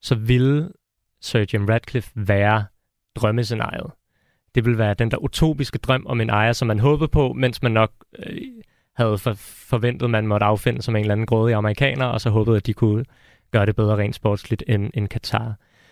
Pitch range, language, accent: 110-130 Hz, Danish, native